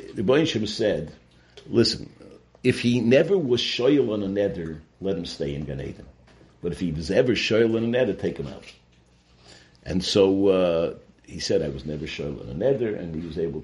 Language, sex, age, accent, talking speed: English, male, 60-79, American, 200 wpm